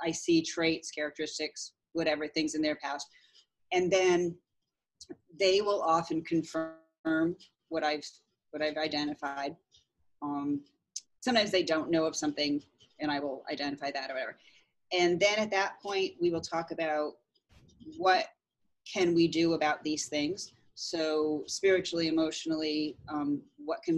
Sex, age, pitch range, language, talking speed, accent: female, 30-49, 150-175 Hz, English, 140 wpm, American